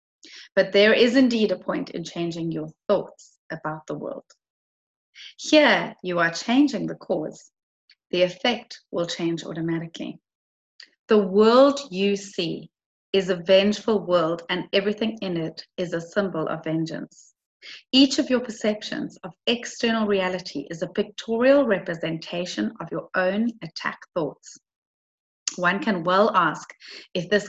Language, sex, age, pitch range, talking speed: English, female, 30-49, 170-220 Hz, 140 wpm